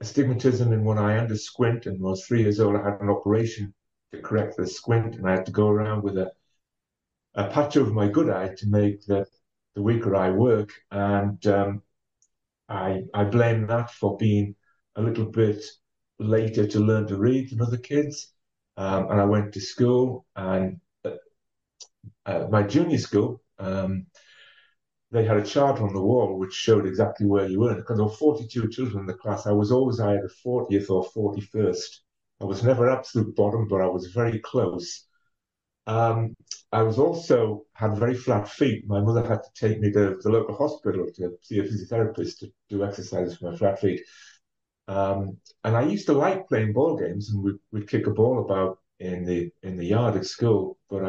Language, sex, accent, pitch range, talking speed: English, male, British, 100-115 Hz, 195 wpm